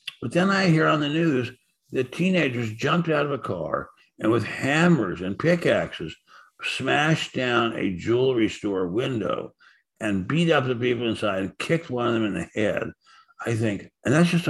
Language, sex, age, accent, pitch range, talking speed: English, male, 60-79, American, 110-155 Hz, 180 wpm